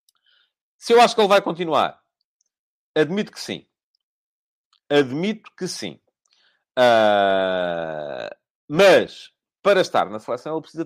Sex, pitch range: male, 145-235 Hz